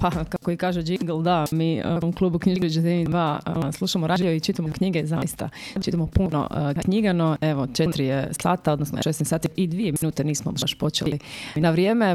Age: 30-49